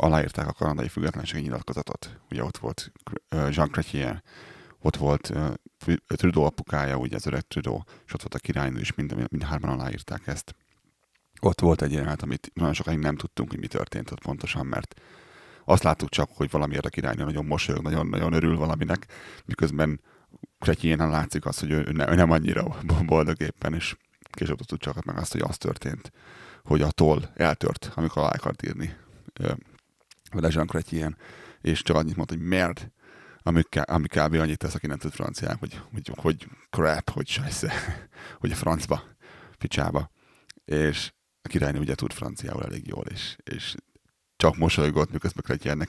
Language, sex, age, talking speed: Hungarian, male, 30-49, 160 wpm